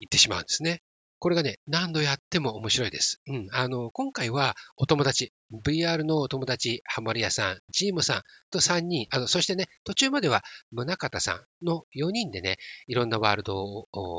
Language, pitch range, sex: Japanese, 110-175 Hz, male